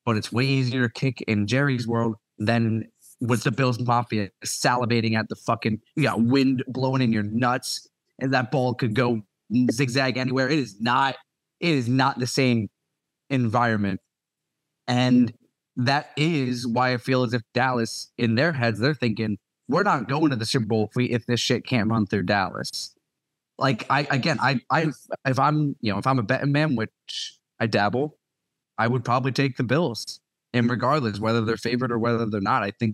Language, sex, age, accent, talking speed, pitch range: English, male, 30-49, American, 190 wpm, 110-135 Hz